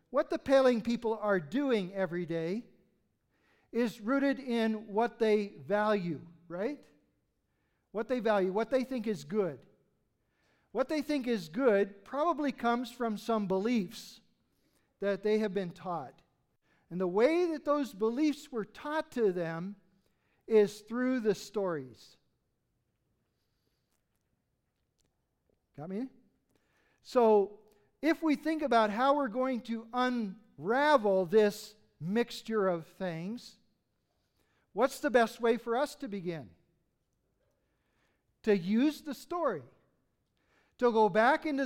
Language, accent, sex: English, American, male